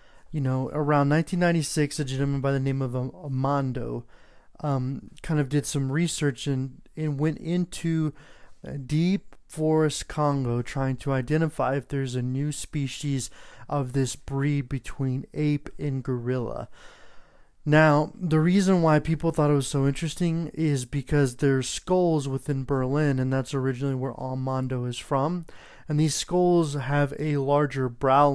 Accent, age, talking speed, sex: American, 30-49, 145 wpm, male